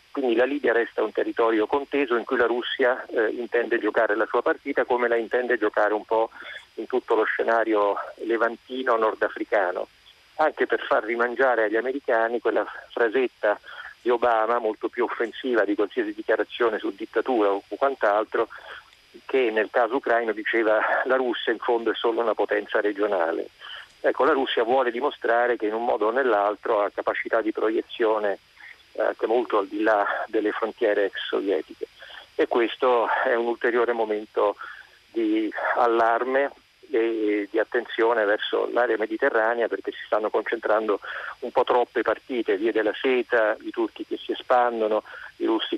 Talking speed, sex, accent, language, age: 155 wpm, male, native, Italian, 40-59